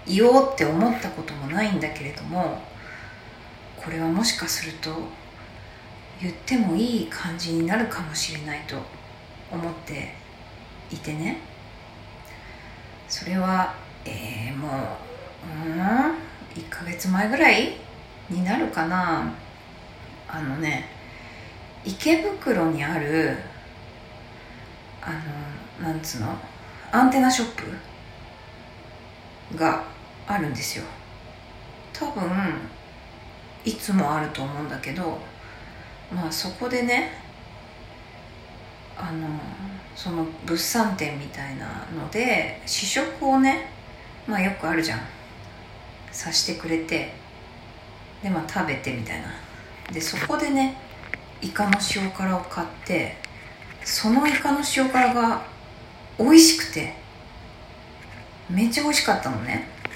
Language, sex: Japanese, female